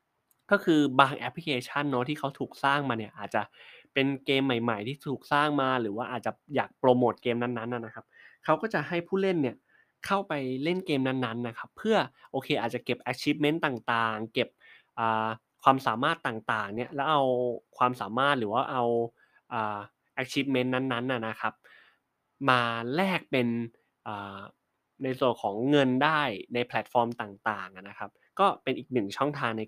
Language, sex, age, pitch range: Thai, male, 20-39, 115-145 Hz